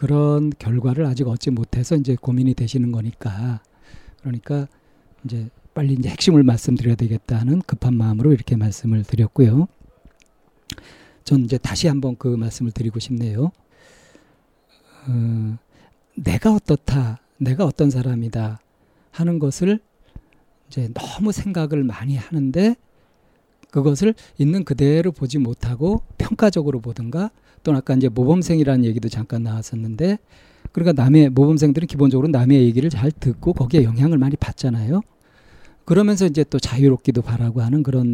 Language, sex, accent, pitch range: Korean, male, native, 120-155 Hz